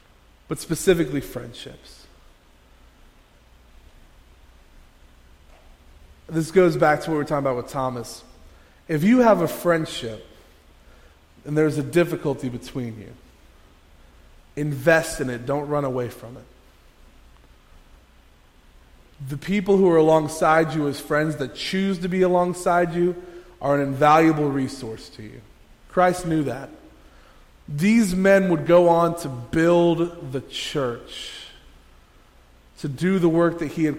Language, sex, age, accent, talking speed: English, male, 30-49, American, 125 wpm